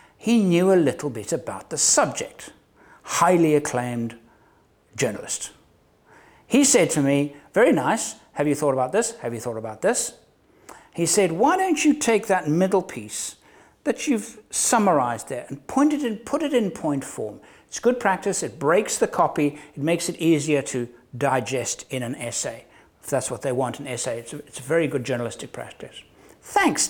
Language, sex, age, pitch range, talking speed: English, male, 60-79, 130-220 Hz, 170 wpm